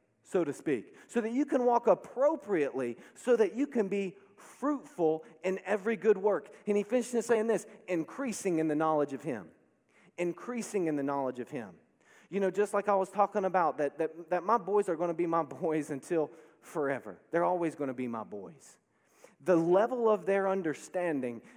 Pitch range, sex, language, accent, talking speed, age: 165-230 Hz, male, English, American, 190 wpm, 30-49